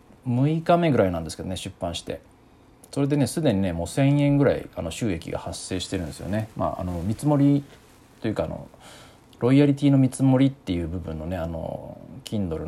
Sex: male